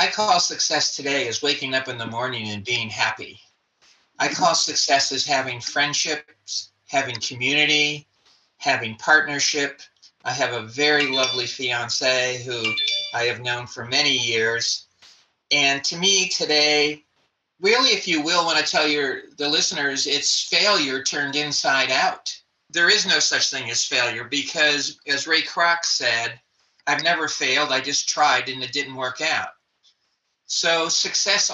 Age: 40-59